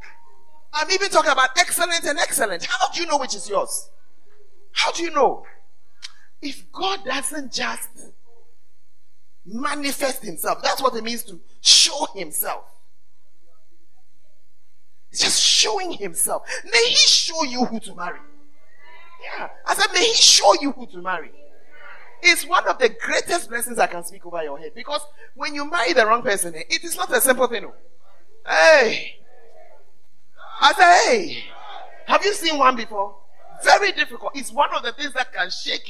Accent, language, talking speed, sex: Nigerian, English, 160 wpm, male